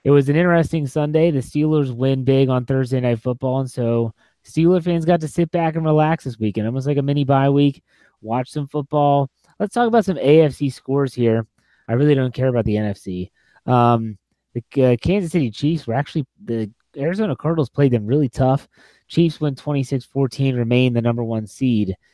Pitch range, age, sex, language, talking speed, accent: 120-150 Hz, 30-49, male, English, 190 wpm, American